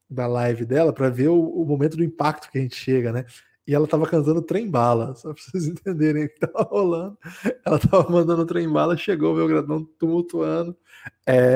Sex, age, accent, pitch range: male, 20-39, Brazilian, 125-170 Hz